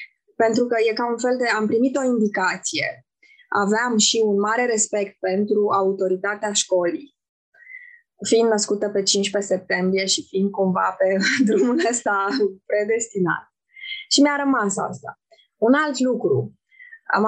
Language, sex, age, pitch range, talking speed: Romanian, female, 20-39, 195-255 Hz, 135 wpm